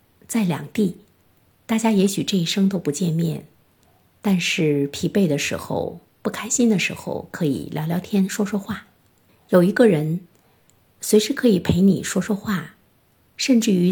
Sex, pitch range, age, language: female, 160-210 Hz, 50-69, Chinese